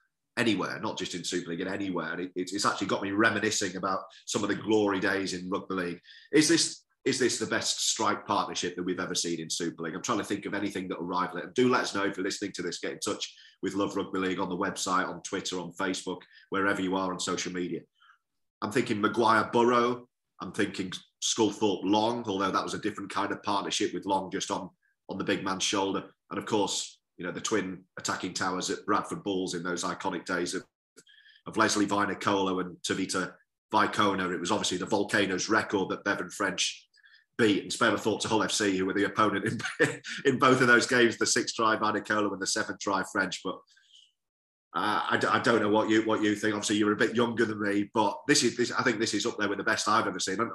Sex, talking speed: male, 235 wpm